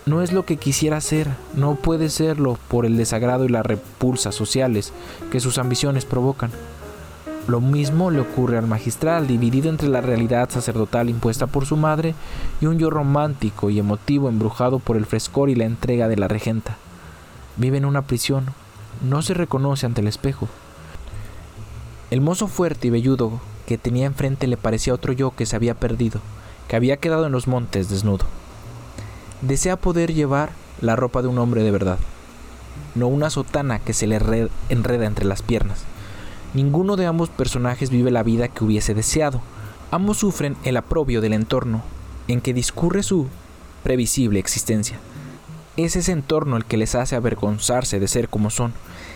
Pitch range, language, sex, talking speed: 110-140 Hz, Spanish, male, 170 wpm